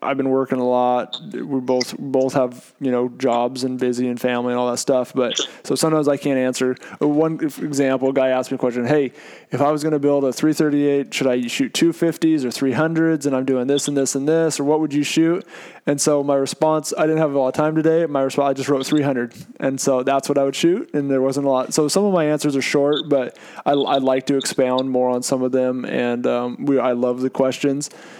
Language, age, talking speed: English, 20-39, 265 wpm